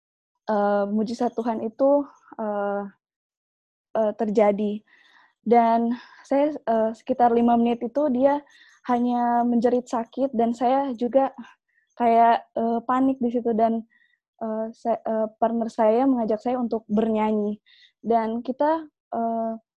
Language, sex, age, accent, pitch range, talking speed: Indonesian, female, 10-29, native, 225-260 Hz, 110 wpm